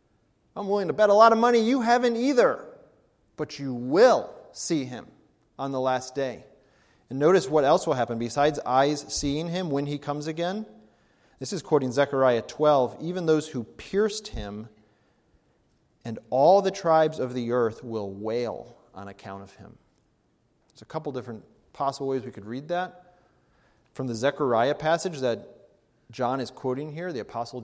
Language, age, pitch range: English, 30-49, 115-150 Hz